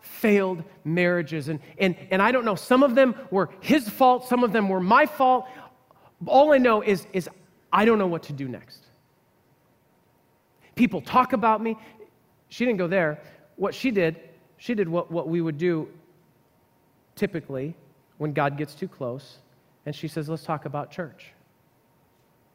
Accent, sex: American, male